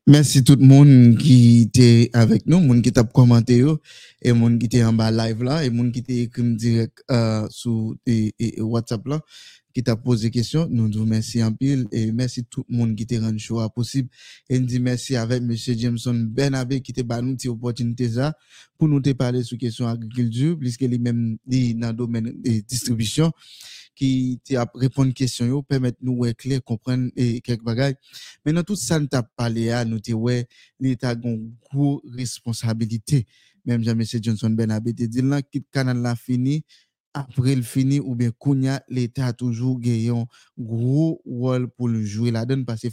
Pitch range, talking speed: 115-130 Hz, 195 wpm